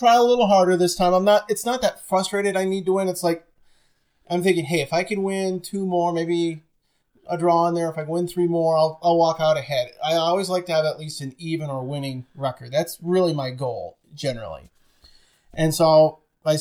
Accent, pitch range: American, 150-175 Hz